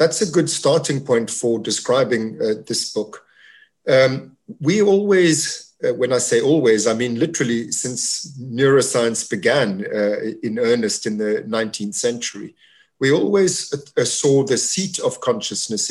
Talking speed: 145 wpm